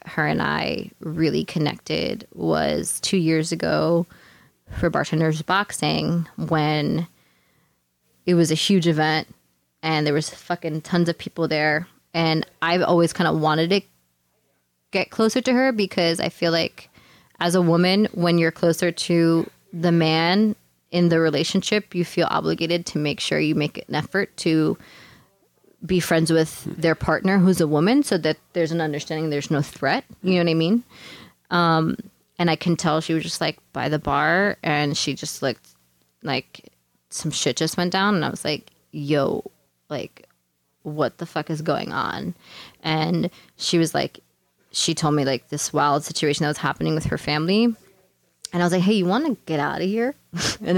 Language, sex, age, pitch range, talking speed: English, female, 20-39, 150-180 Hz, 175 wpm